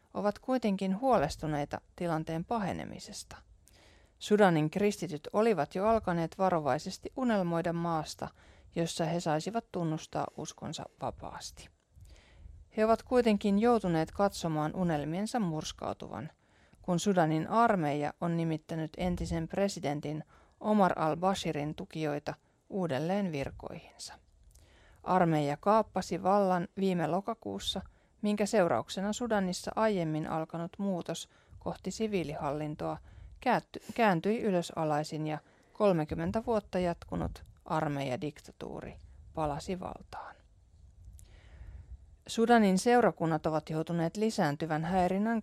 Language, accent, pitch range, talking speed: Finnish, native, 150-200 Hz, 90 wpm